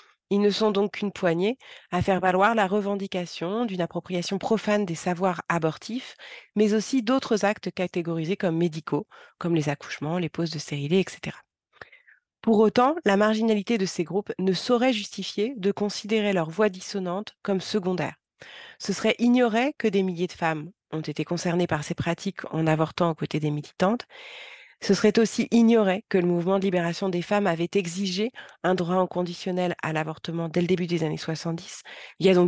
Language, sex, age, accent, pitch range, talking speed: French, female, 30-49, French, 175-215 Hz, 180 wpm